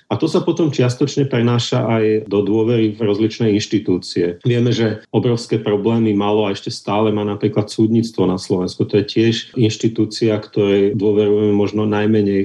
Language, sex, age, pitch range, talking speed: Slovak, male, 40-59, 105-120 Hz, 160 wpm